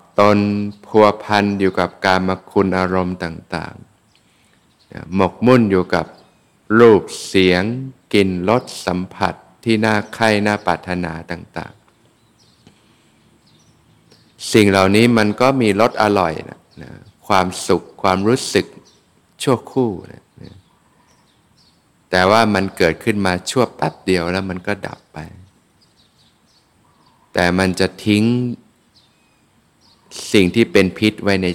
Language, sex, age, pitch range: Thai, male, 60-79, 90-105 Hz